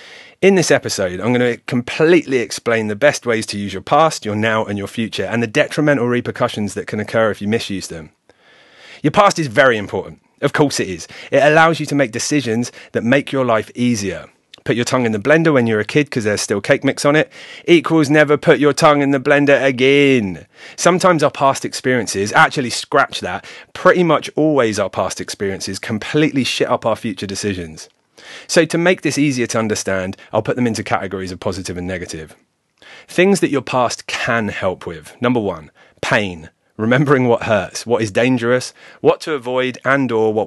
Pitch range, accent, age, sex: 110-145 Hz, British, 30-49, male